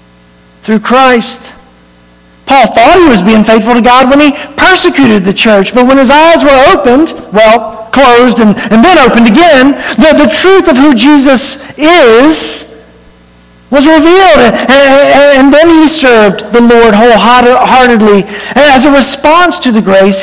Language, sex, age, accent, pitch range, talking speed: English, male, 50-69, American, 205-265 Hz, 155 wpm